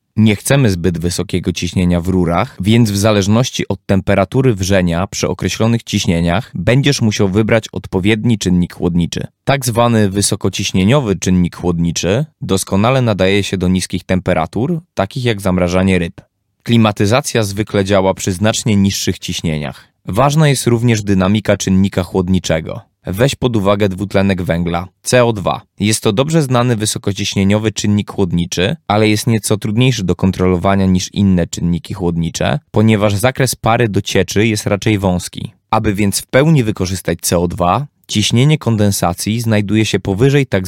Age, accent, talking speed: 20-39, native, 135 wpm